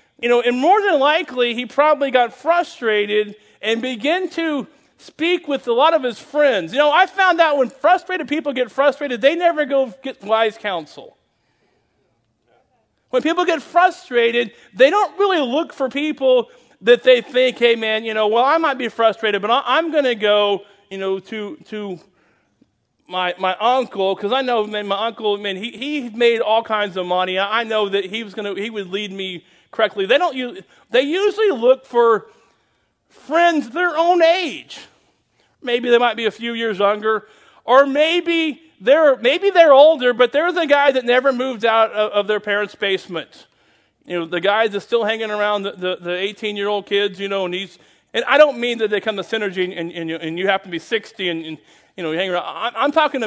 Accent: American